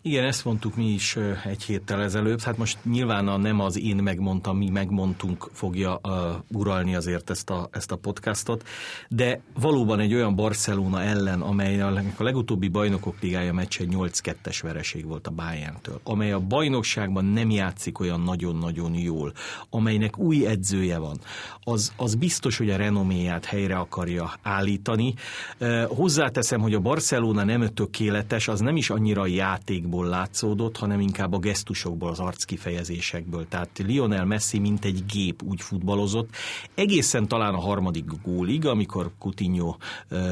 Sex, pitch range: male, 95-110 Hz